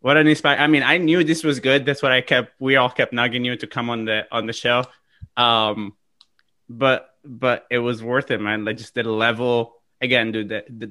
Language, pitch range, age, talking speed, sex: English, 115-130 Hz, 20-39, 220 wpm, male